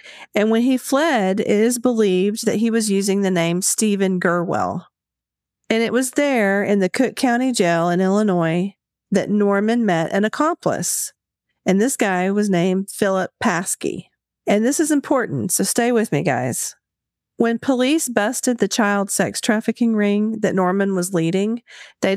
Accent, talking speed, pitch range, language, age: American, 160 wpm, 180-225 Hz, English, 40-59